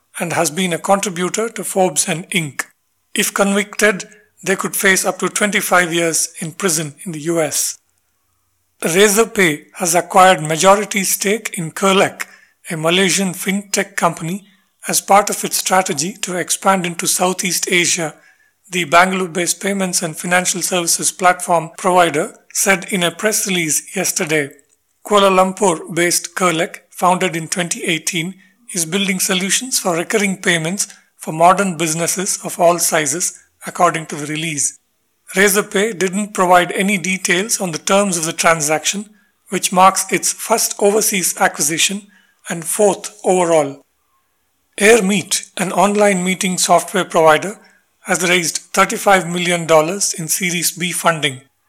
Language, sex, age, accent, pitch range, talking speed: English, male, 50-69, Indian, 170-200 Hz, 130 wpm